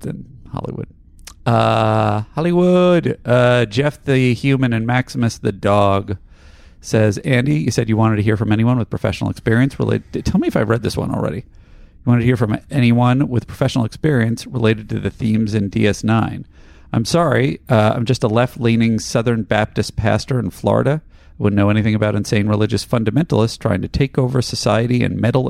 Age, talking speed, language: 40-59, 175 wpm, English